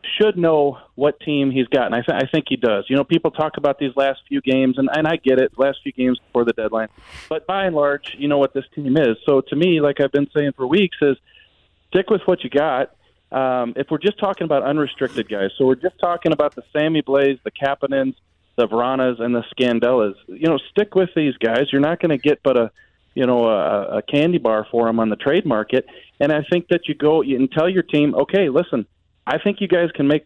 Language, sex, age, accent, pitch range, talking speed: English, male, 40-59, American, 125-150 Hz, 250 wpm